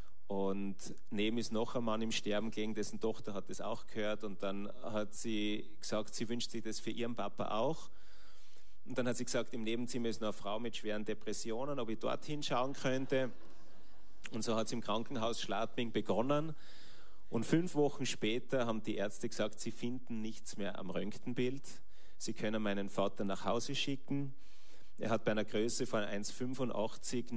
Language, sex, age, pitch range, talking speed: German, male, 30-49, 105-125 Hz, 180 wpm